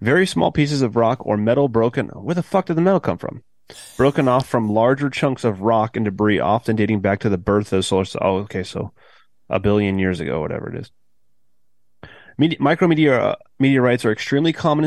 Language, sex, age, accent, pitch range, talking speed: English, male, 30-49, American, 100-130 Hz, 200 wpm